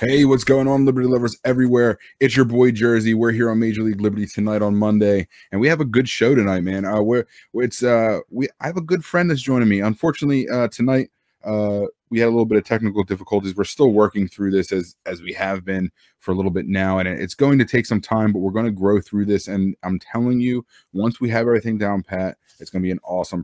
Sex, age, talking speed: male, 20-39, 250 wpm